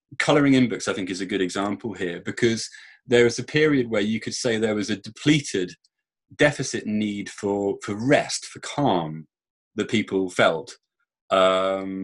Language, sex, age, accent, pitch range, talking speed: English, male, 30-49, British, 95-125 Hz, 170 wpm